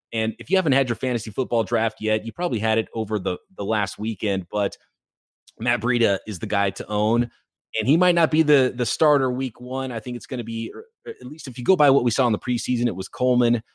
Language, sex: English, male